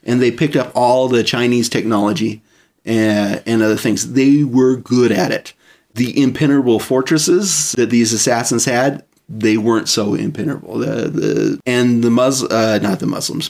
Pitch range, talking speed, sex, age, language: 110-125 Hz, 165 wpm, male, 30-49, English